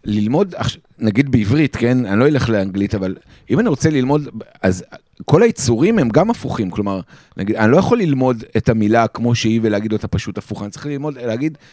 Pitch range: 105-135 Hz